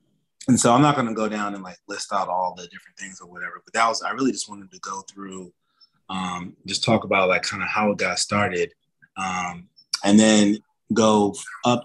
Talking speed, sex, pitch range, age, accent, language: 225 wpm, male, 90-105 Hz, 30-49, American, English